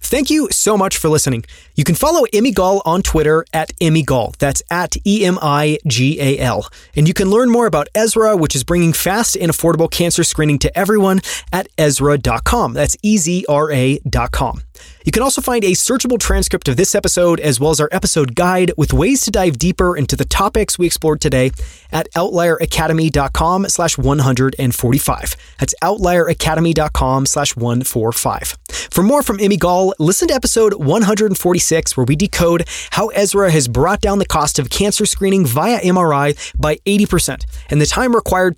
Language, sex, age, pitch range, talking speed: English, male, 30-49, 145-200 Hz, 165 wpm